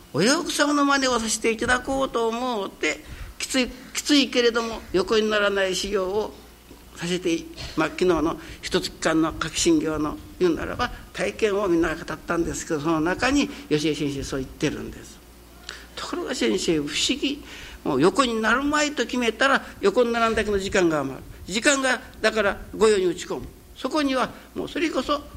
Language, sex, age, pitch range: Japanese, male, 60-79, 155-245 Hz